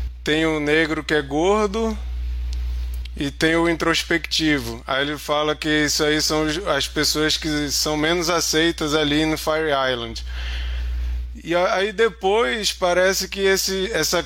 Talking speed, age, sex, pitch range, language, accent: 140 wpm, 20-39, male, 135-185 Hz, Portuguese, Brazilian